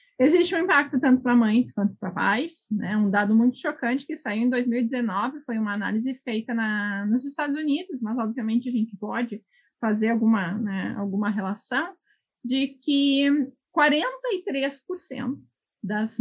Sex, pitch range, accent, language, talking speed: female, 220-280 Hz, Brazilian, Portuguese, 140 wpm